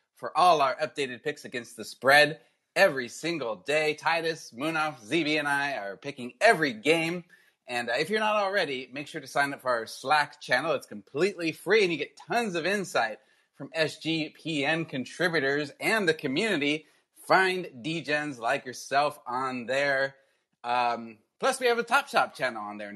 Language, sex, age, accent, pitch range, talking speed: English, male, 30-49, American, 125-165 Hz, 170 wpm